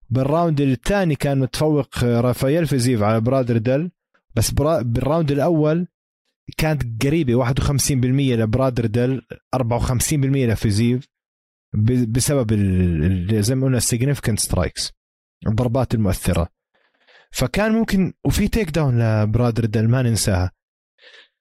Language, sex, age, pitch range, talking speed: Arabic, male, 20-39, 115-145 Hz, 95 wpm